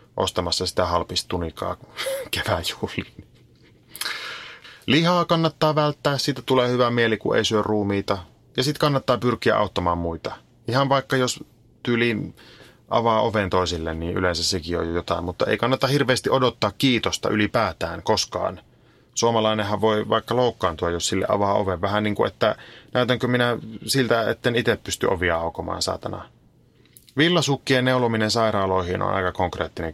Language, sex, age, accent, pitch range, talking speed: Finnish, male, 30-49, native, 95-130 Hz, 135 wpm